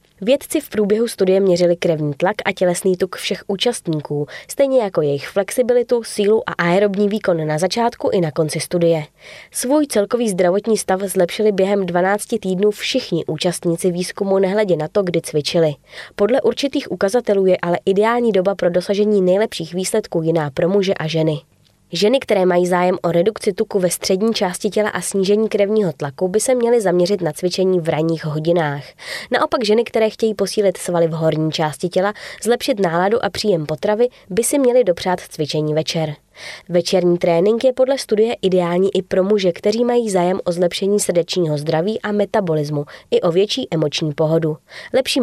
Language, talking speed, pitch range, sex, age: Czech, 170 wpm, 170-215 Hz, female, 20-39